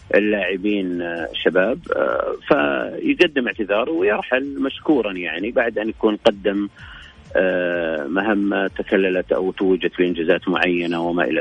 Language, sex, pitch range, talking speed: Arabic, male, 95-120 Hz, 100 wpm